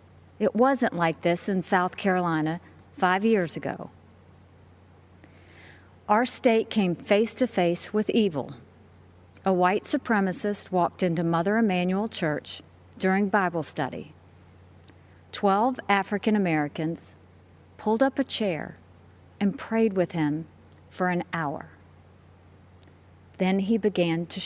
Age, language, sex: 50-69, English, female